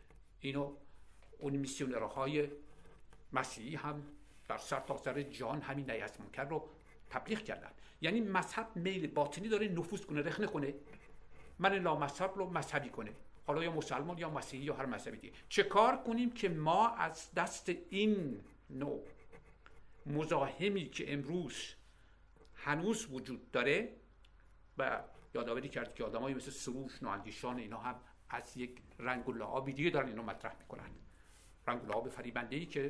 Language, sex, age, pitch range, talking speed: Persian, male, 50-69, 140-185 Hz, 145 wpm